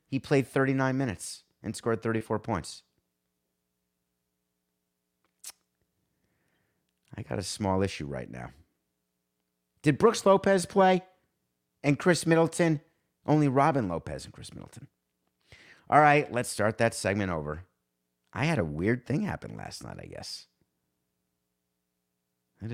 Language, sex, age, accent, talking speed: English, male, 50-69, American, 120 wpm